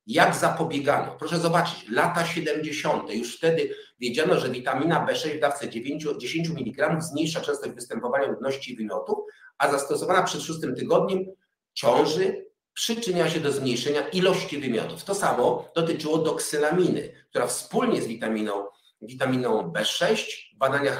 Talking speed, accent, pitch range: 135 wpm, native, 140-190 Hz